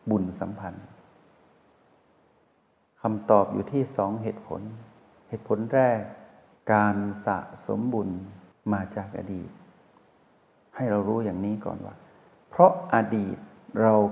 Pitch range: 100-115 Hz